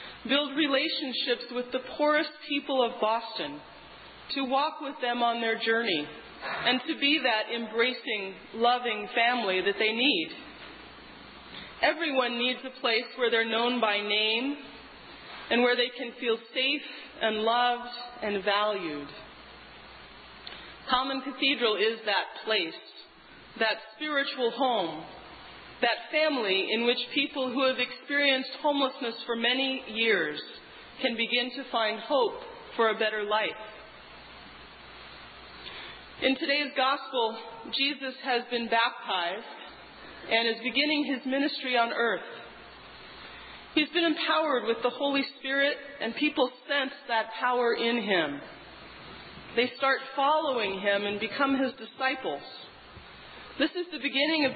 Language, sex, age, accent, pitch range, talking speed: English, female, 40-59, American, 230-280 Hz, 125 wpm